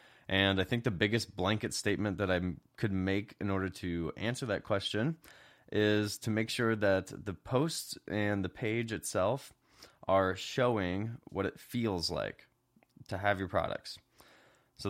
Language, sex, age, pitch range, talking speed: English, male, 20-39, 90-105 Hz, 155 wpm